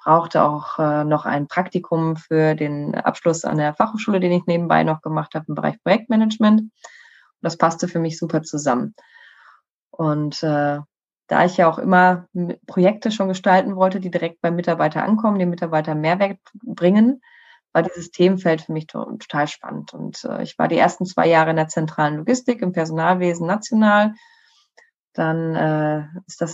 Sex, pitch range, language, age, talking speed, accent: female, 160-205 Hz, German, 20-39, 165 wpm, German